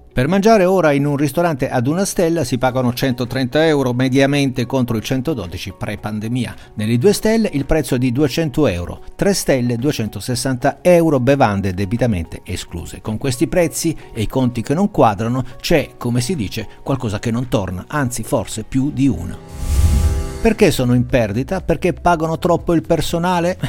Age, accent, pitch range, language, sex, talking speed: 50-69, native, 110-155 Hz, Italian, male, 165 wpm